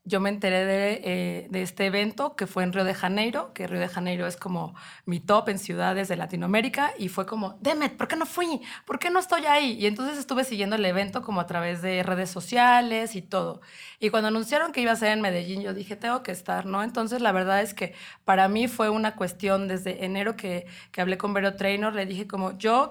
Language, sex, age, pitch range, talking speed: Spanish, female, 30-49, 185-215 Hz, 235 wpm